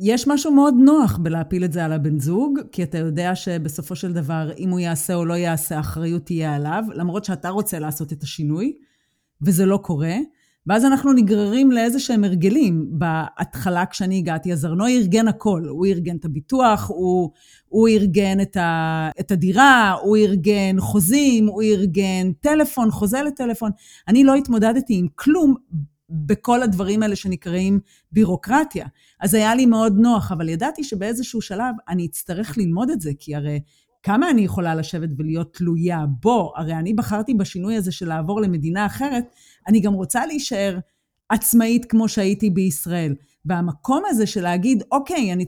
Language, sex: Hebrew, female